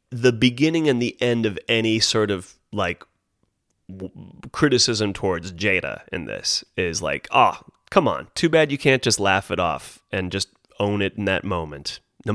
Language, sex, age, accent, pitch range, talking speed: English, male, 30-49, American, 105-140 Hz, 175 wpm